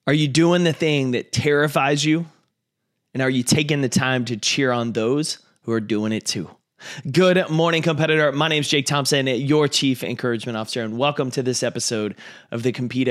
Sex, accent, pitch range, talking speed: male, American, 130-160 Hz, 195 wpm